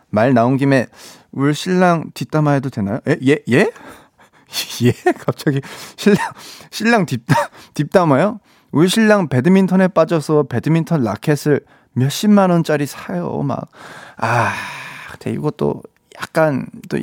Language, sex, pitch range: Korean, male, 125-190 Hz